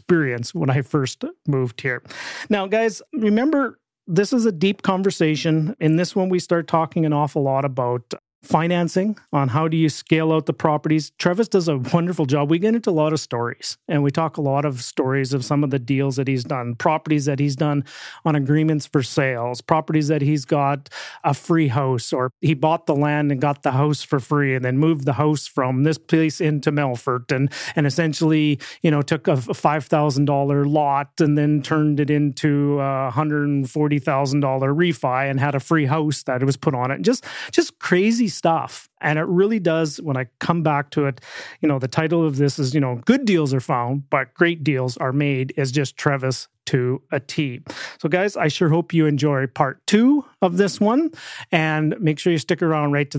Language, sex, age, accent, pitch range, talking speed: English, male, 30-49, American, 140-165 Hz, 210 wpm